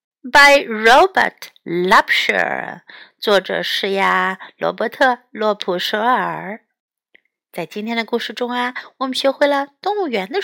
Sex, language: female, Chinese